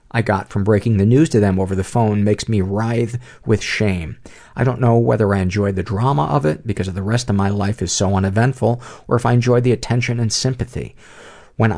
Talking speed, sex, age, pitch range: 230 wpm, male, 50-69, 95-120 Hz